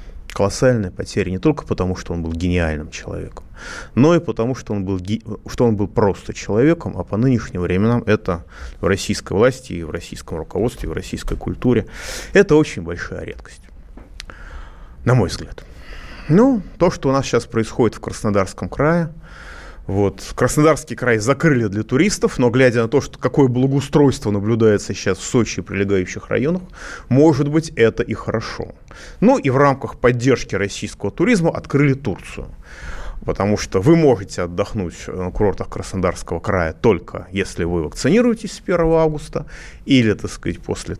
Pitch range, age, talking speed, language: 90-140 Hz, 30-49, 150 wpm, Russian